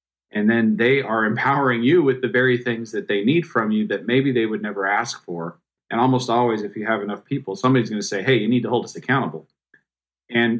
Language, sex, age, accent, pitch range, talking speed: English, male, 40-59, American, 105-130 Hz, 240 wpm